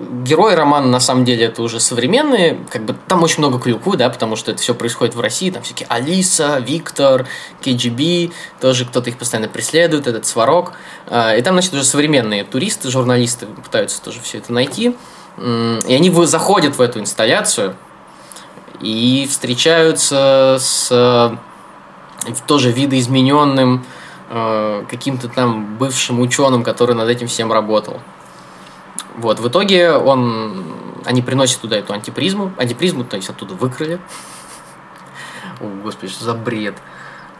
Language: Russian